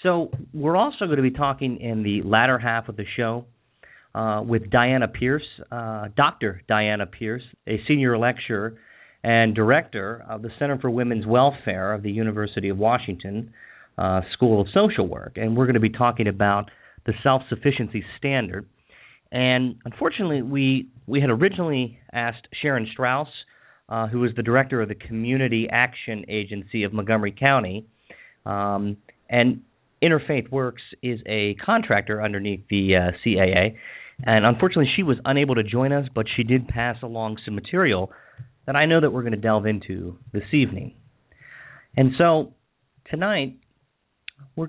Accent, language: American, English